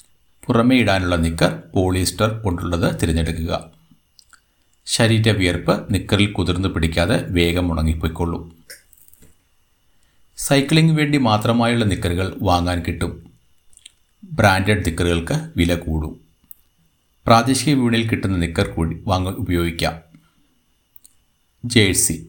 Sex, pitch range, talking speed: male, 85-105 Hz, 80 wpm